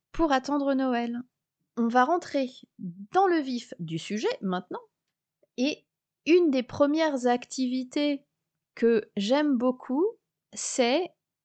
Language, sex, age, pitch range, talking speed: French, female, 30-49, 205-270 Hz, 110 wpm